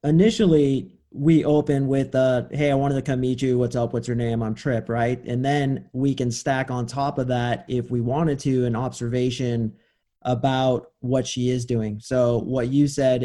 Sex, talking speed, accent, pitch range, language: male, 200 wpm, American, 125-140 Hz, English